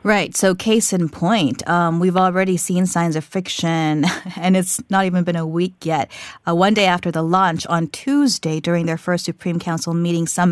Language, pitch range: Korean, 165-195 Hz